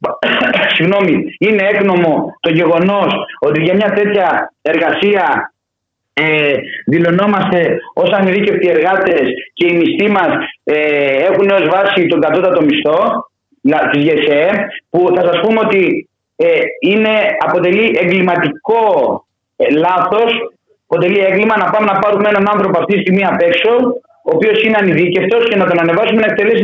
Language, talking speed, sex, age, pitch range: Greek, 135 wpm, male, 30-49, 175-225 Hz